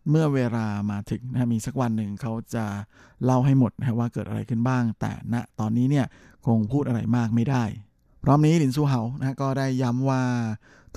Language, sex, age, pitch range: Thai, male, 20-39, 110-130 Hz